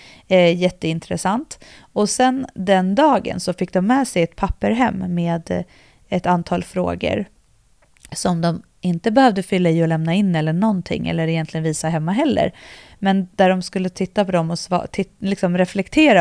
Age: 30-49